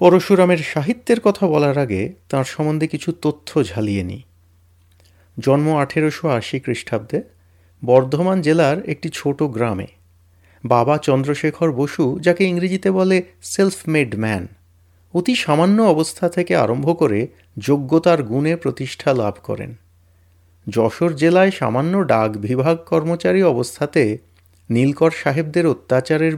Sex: male